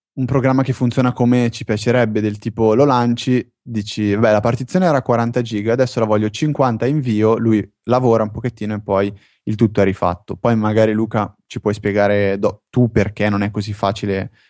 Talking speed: 190 wpm